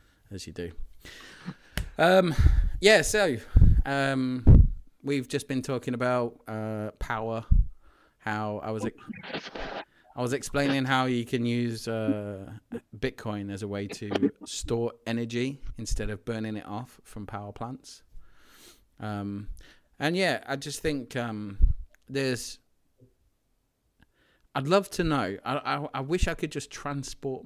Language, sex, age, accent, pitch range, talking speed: English, male, 30-49, British, 105-135 Hz, 130 wpm